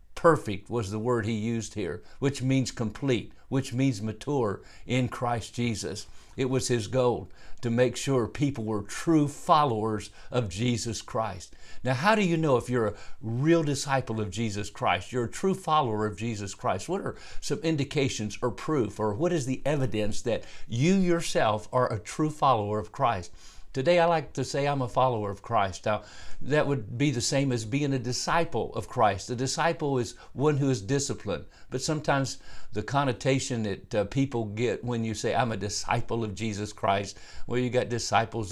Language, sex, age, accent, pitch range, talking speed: English, male, 50-69, American, 110-145 Hz, 185 wpm